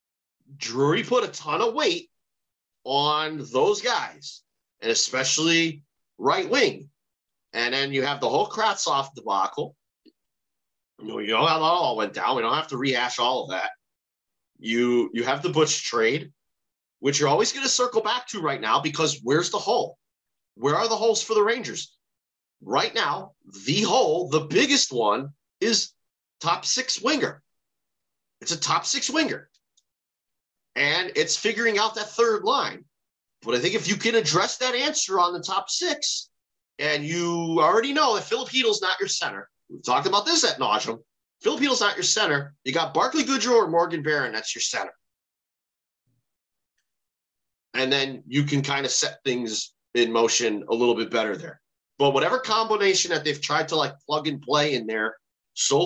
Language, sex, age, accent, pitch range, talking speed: English, male, 30-49, American, 135-220 Hz, 170 wpm